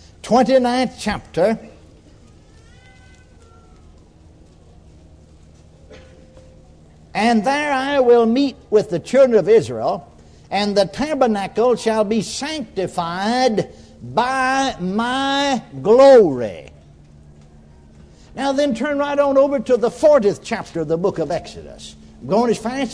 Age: 60-79